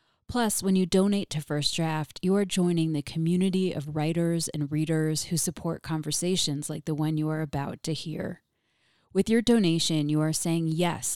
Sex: female